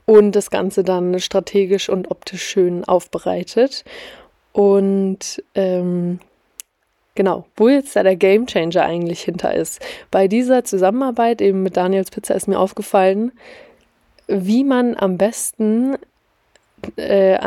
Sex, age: female, 20-39